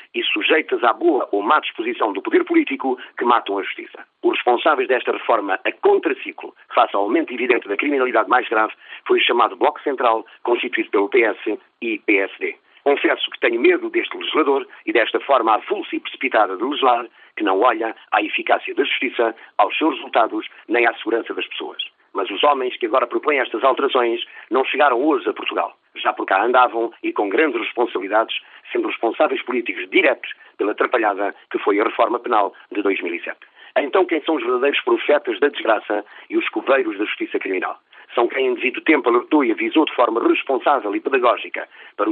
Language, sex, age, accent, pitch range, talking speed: Portuguese, male, 50-69, Portuguese, 335-390 Hz, 180 wpm